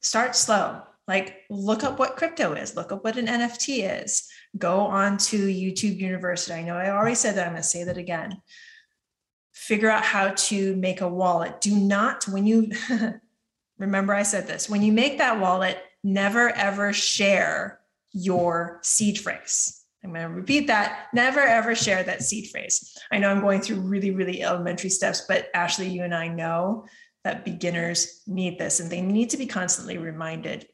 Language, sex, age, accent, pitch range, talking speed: English, female, 20-39, American, 185-225 Hz, 180 wpm